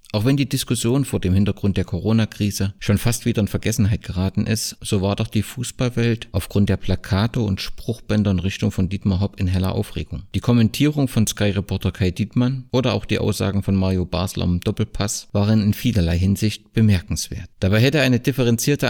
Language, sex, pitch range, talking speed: German, male, 95-120 Hz, 185 wpm